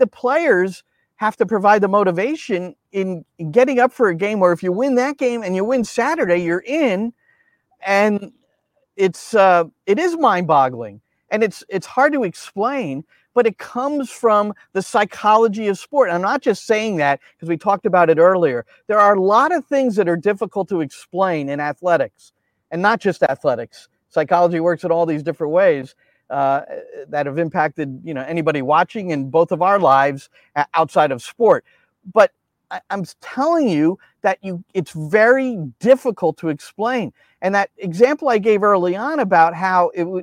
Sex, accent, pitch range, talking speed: male, American, 175-250 Hz, 175 wpm